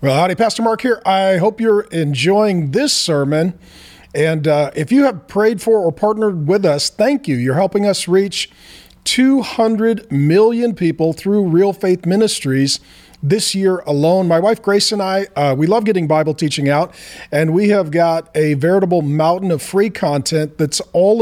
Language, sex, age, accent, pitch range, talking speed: English, male, 40-59, American, 155-200 Hz, 175 wpm